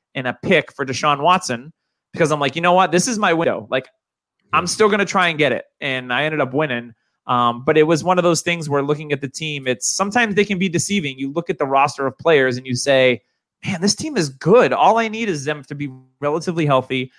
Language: English